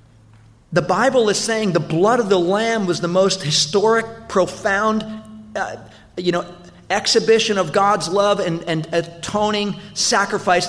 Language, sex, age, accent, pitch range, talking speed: English, male, 40-59, American, 150-190 Hz, 140 wpm